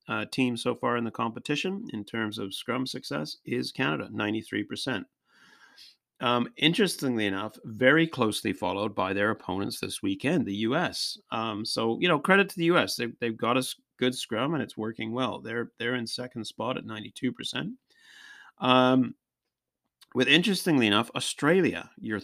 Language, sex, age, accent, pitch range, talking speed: English, male, 30-49, American, 110-135 Hz, 160 wpm